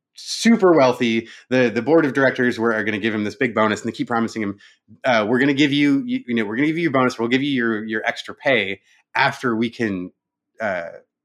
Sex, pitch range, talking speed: male, 110-140 Hz, 250 wpm